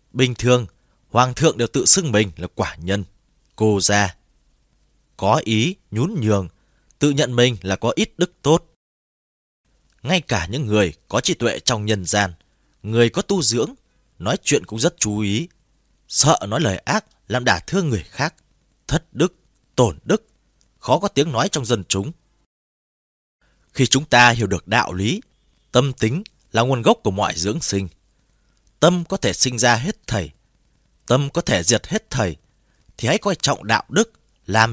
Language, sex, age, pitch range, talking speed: Vietnamese, male, 20-39, 95-130 Hz, 175 wpm